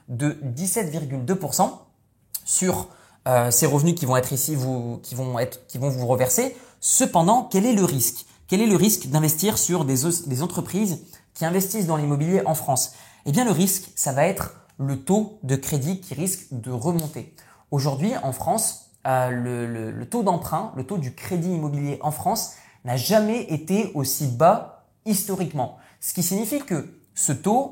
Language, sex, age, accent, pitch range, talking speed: French, male, 20-39, French, 135-185 Hz, 175 wpm